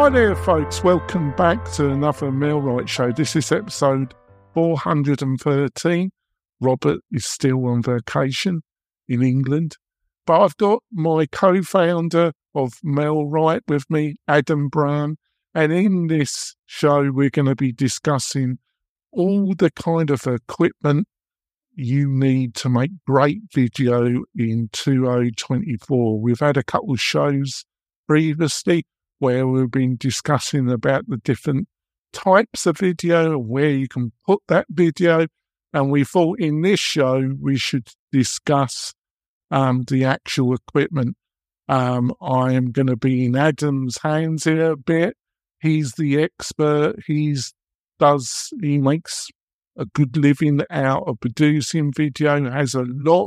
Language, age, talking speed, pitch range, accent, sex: English, 50-69, 135 wpm, 130-160 Hz, British, male